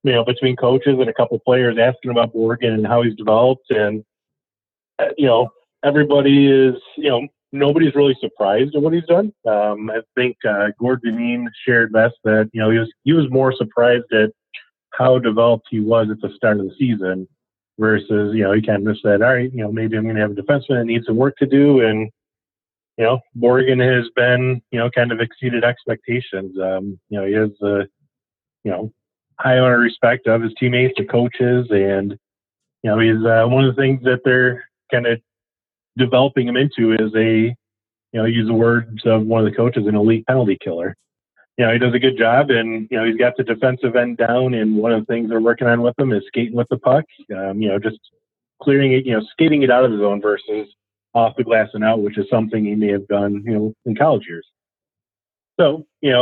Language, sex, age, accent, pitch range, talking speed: English, male, 30-49, American, 110-125 Hz, 220 wpm